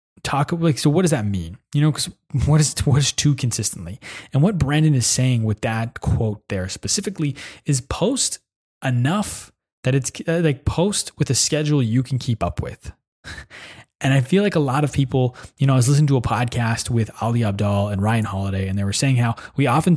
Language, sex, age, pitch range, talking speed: English, male, 20-39, 115-155 Hz, 215 wpm